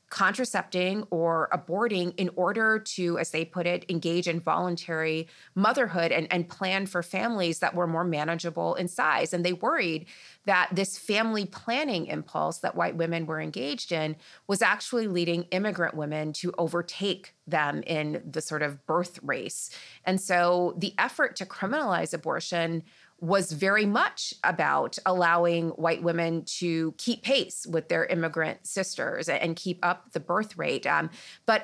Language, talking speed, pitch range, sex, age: English, 155 wpm, 165-210 Hz, female, 30-49